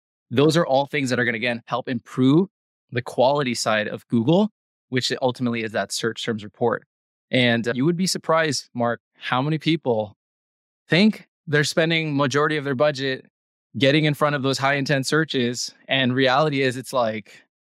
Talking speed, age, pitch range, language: 175 wpm, 20-39, 120-145 Hz, English